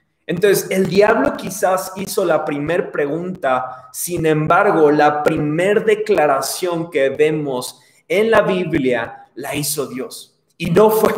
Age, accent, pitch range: 30-49, Mexican, 145-190 Hz